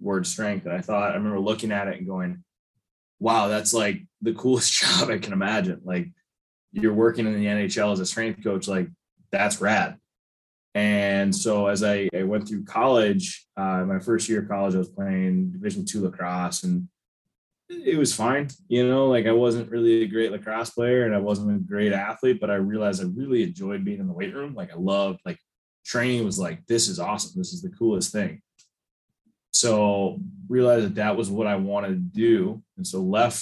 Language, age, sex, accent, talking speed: English, 20-39, male, American, 205 wpm